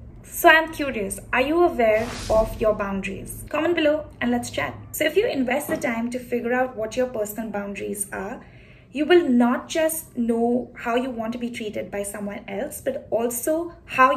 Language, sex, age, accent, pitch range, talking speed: English, female, 20-39, Indian, 205-270 Hz, 190 wpm